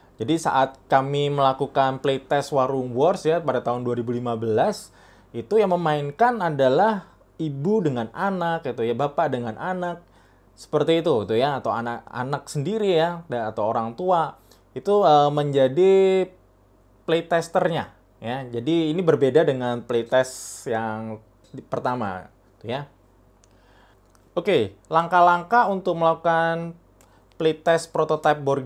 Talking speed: 120 wpm